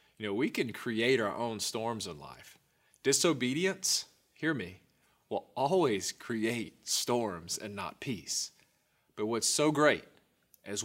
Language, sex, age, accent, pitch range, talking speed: English, male, 30-49, American, 105-130 Hz, 140 wpm